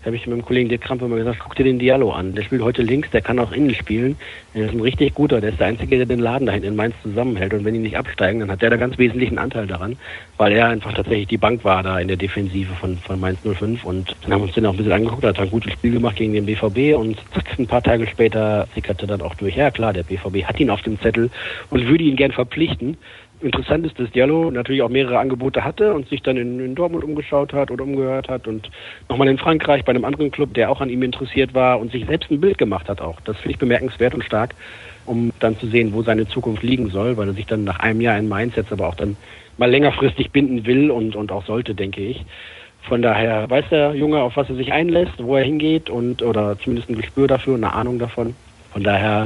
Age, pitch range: 40-59, 105-125 Hz